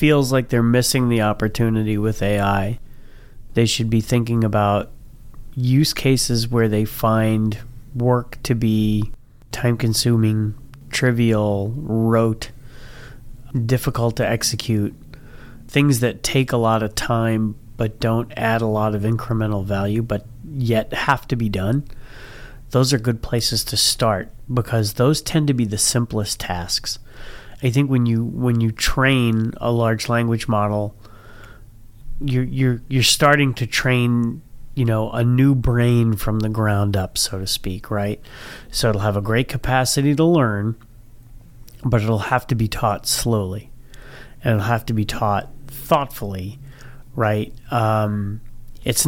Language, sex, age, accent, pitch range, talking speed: English, male, 30-49, American, 110-130 Hz, 145 wpm